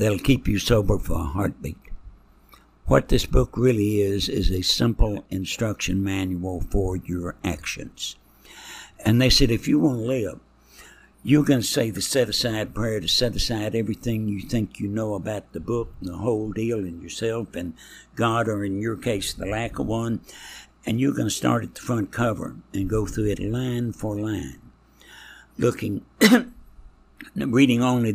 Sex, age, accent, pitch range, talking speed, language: male, 60-79, American, 95-115 Hz, 175 wpm, English